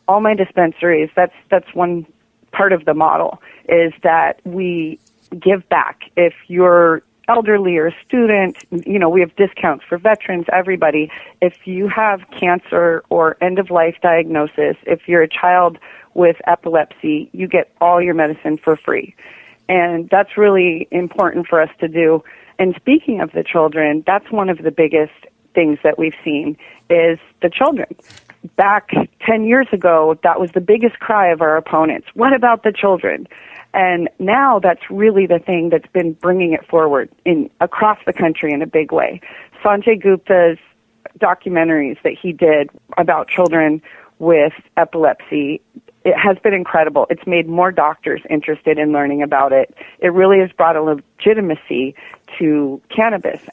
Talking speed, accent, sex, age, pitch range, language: 155 wpm, American, female, 40-59, 160-190 Hz, English